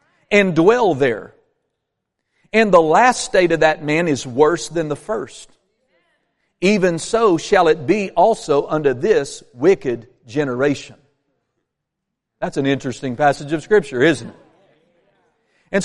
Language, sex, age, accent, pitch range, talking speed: English, male, 50-69, American, 145-200 Hz, 130 wpm